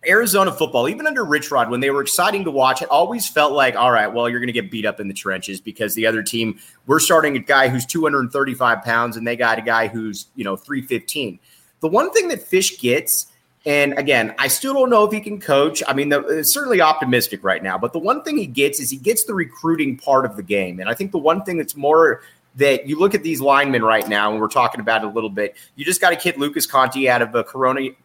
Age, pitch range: 30-49, 125-180 Hz